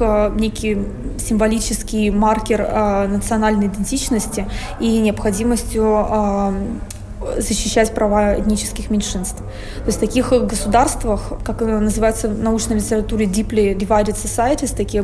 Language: Russian